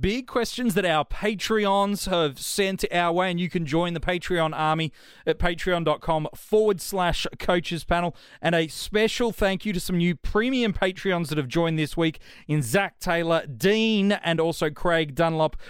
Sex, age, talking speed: male, 30-49, 170 wpm